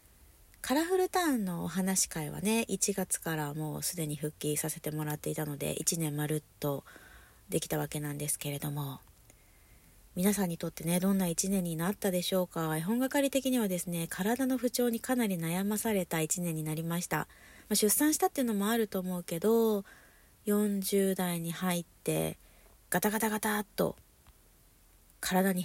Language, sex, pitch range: Japanese, female, 150-200 Hz